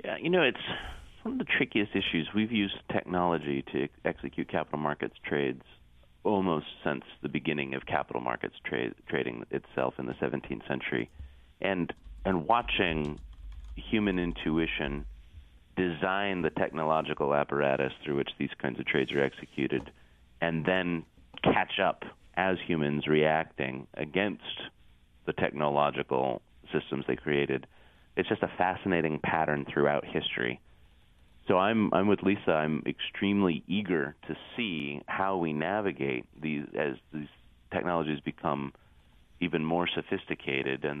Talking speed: 130 wpm